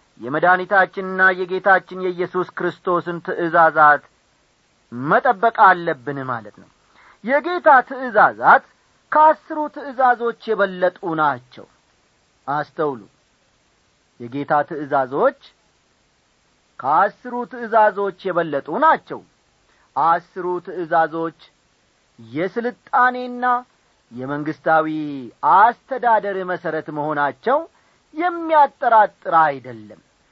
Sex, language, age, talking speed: male, Amharic, 40-59, 60 wpm